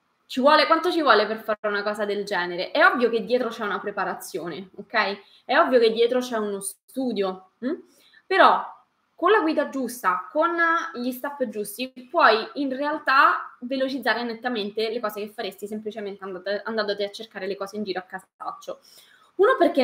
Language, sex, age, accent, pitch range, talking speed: Italian, female, 20-39, native, 200-270 Hz, 175 wpm